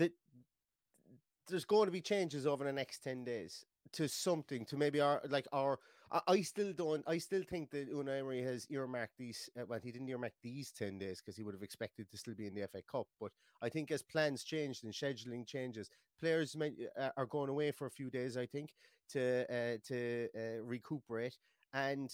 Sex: male